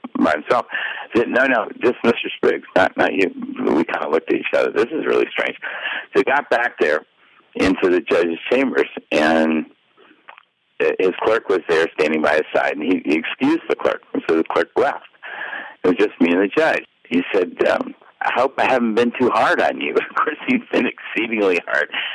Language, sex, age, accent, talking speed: English, male, 60-79, American, 210 wpm